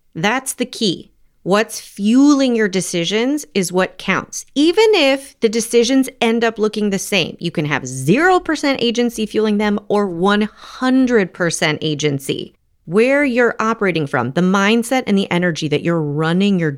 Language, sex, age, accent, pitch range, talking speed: English, female, 30-49, American, 165-255 Hz, 150 wpm